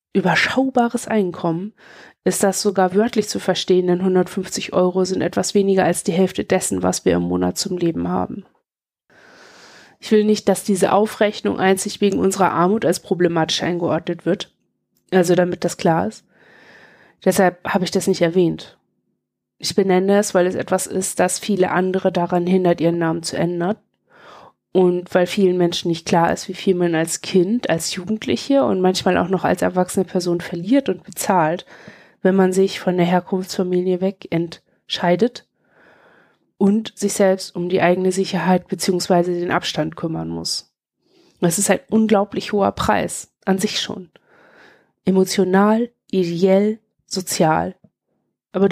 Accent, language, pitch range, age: German, German, 175-205 Hz, 20-39